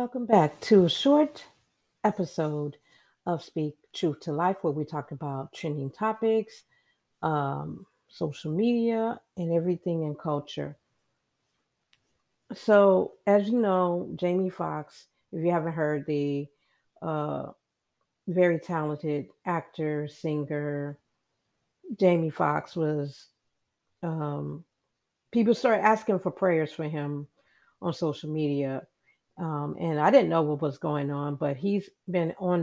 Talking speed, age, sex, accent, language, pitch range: 125 wpm, 50-69, female, American, English, 145-175 Hz